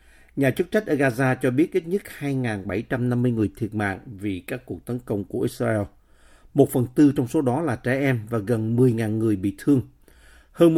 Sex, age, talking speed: male, 50-69, 200 wpm